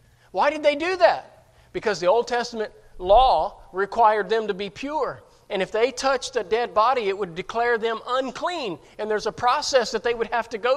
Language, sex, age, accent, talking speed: English, male, 40-59, American, 205 wpm